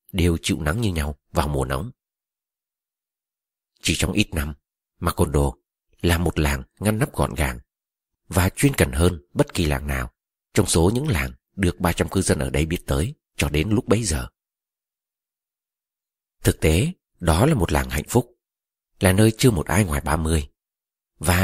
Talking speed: 175 wpm